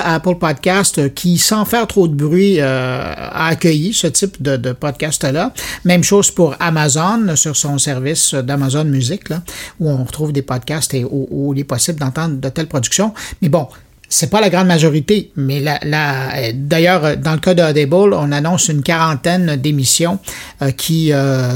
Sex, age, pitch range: male, 50-69, 135-175 Hz